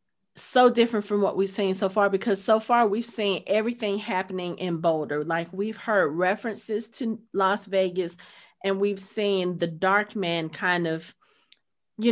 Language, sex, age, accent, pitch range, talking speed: English, female, 30-49, American, 170-200 Hz, 165 wpm